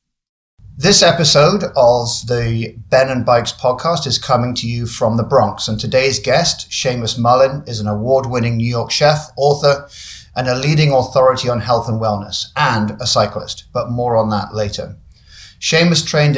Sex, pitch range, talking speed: male, 110-130 Hz, 165 wpm